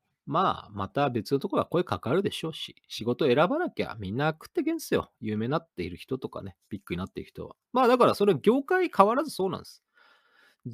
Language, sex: Japanese, male